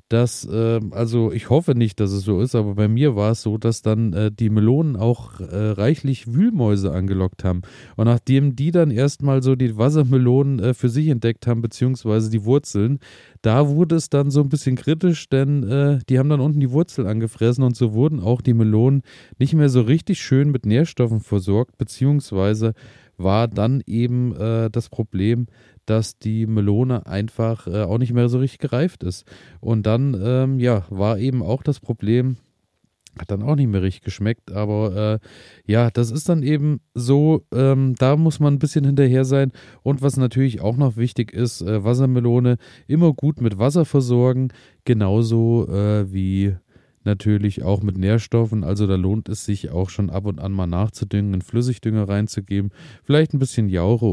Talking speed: 175 wpm